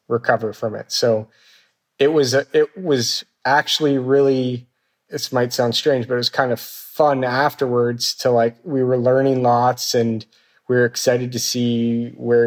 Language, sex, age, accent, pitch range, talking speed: English, male, 30-49, American, 115-125 Hz, 165 wpm